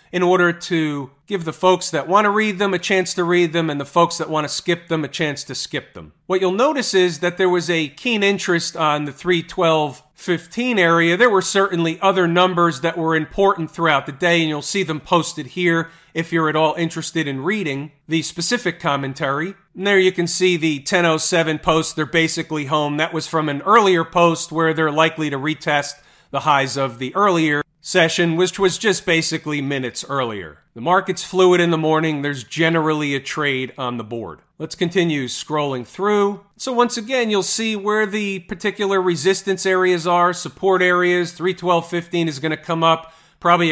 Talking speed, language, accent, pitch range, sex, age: 195 wpm, English, American, 155-185 Hz, male, 40-59